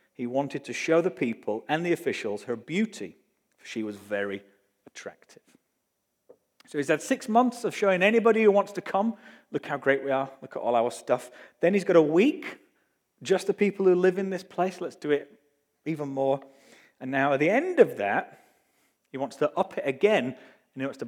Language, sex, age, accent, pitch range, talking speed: English, male, 30-49, British, 115-175 Hz, 210 wpm